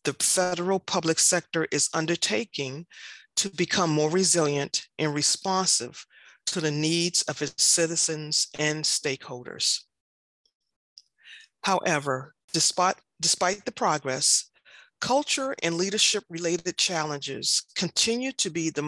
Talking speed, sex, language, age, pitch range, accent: 105 wpm, female, English, 30-49, 150-190 Hz, American